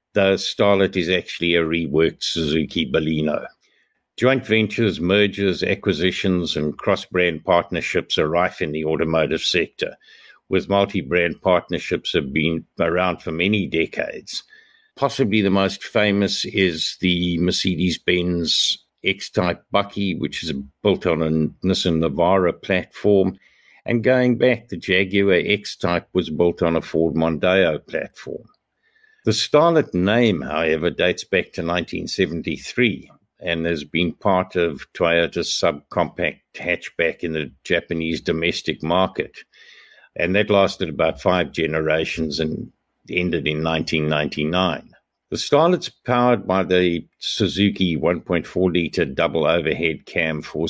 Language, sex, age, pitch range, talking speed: English, male, 60-79, 80-100 Hz, 120 wpm